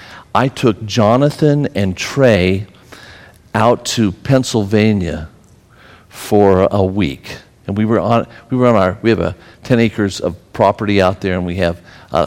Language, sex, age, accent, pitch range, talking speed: English, male, 50-69, American, 100-120 Hz, 155 wpm